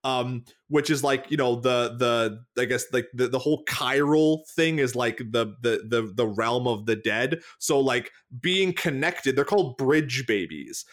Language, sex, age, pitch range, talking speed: English, male, 20-39, 130-170 Hz, 185 wpm